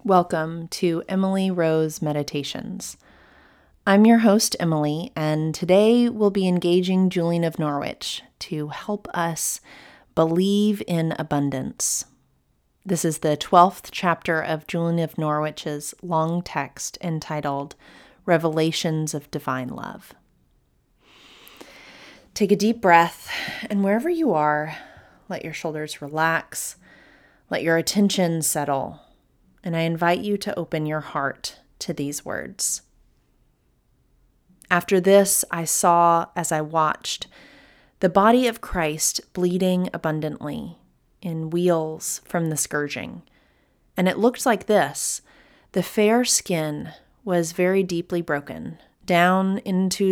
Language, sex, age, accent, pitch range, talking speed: English, female, 30-49, American, 155-190 Hz, 115 wpm